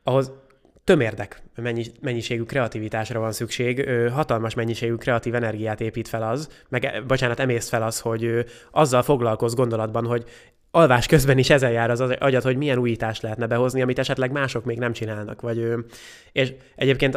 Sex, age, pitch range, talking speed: male, 20-39, 115-130 Hz, 150 wpm